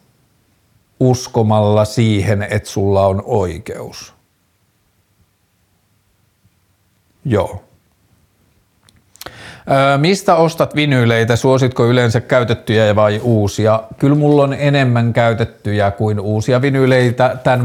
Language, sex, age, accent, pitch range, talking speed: Finnish, male, 50-69, native, 105-125 Hz, 85 wpm